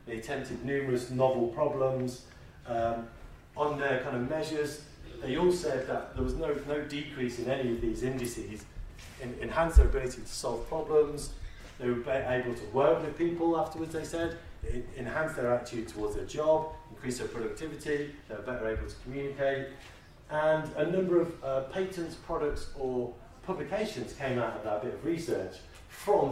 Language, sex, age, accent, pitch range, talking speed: English, male, 40-59, British, 115-155 Hz, 165 wpm